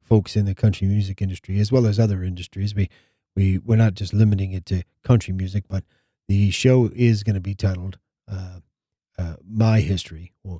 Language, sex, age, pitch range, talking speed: English, male, 40-59, 95-115 Hz, 190 wpm